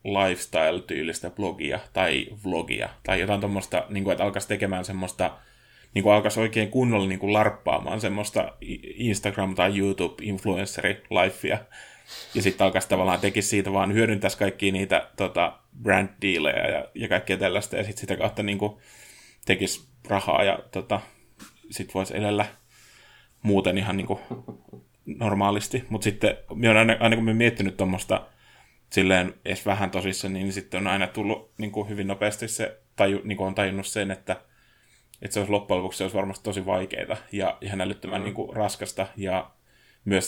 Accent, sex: native, male